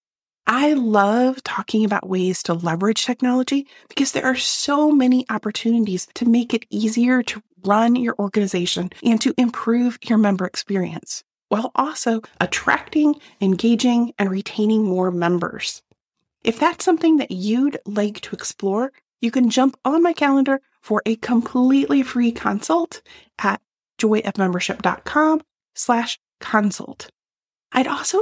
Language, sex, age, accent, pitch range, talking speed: English, female, 30-49, American, 205-275 Hz, 130 wpm